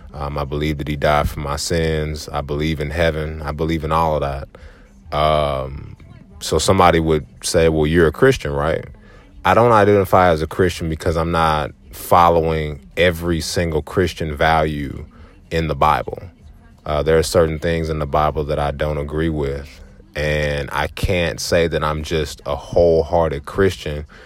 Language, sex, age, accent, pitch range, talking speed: English, male, 20-39, American, 75-85 Hz, 170 wpm